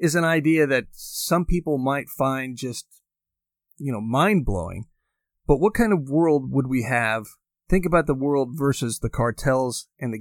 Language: English